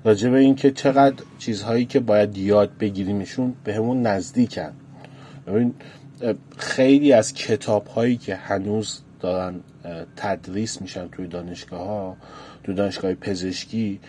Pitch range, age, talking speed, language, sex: 105-135 Hz, 30-49, 110 wpm, Persian, male